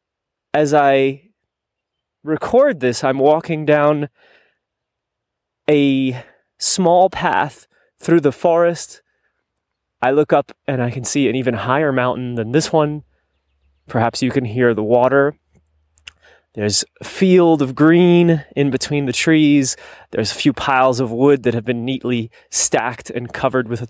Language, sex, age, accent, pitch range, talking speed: English, male, 20-39, American, 115-150 Hz, 145 wpm